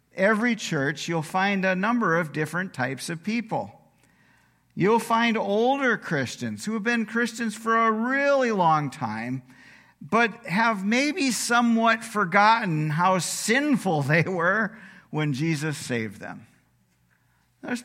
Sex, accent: male, American